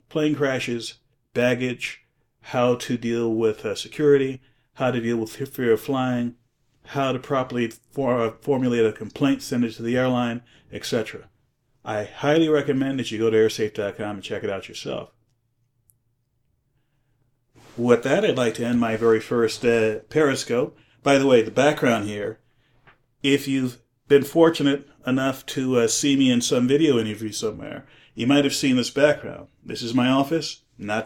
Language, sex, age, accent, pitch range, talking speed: English, male, 40-59, American, 115-135 Hz, 160 wpm